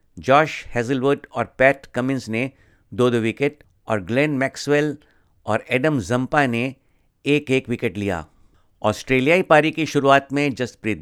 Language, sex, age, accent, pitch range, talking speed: Hindi, male, 50-69, native, 110-140 Hz, 140 wpm